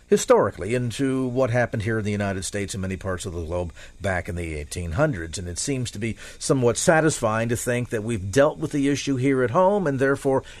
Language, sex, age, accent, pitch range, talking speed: English, male, 50-69, American, 105-150 Hz, 220 wpm